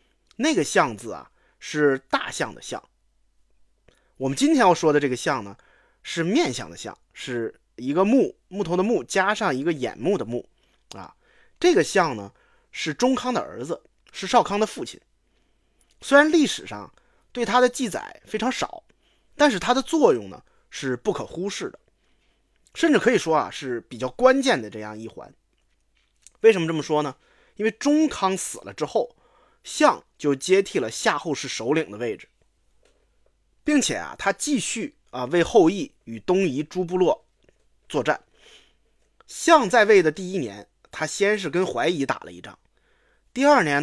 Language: Chinese